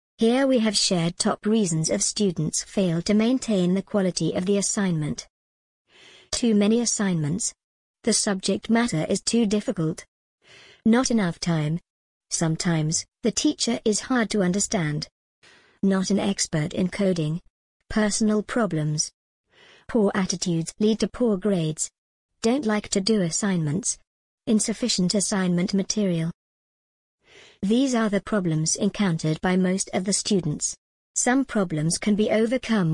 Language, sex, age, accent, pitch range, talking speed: English, male, 50-69, British, 180-220 Hz, 130 wpm